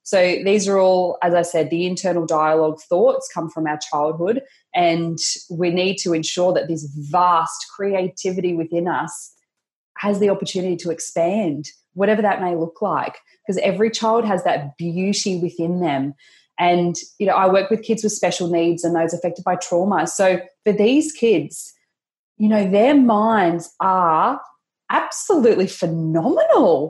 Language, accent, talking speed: English, Australian, 155 wpm